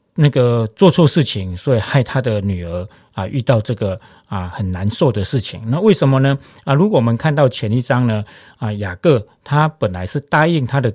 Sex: male